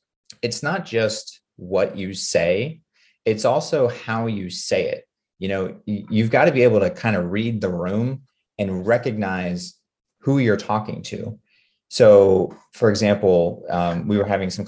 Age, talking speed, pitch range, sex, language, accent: 30-49, 155 wpm, 90-115 Hz, male, English, American